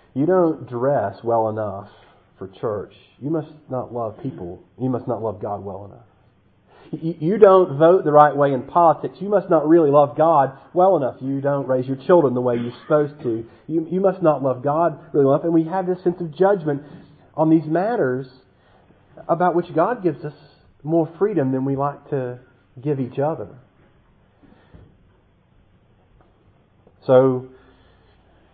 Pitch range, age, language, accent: 115-150 Hz, 40-59, English, American